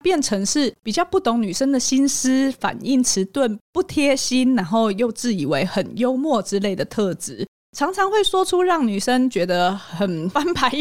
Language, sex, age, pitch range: Chinese, female, 20-39, 190-270 Hz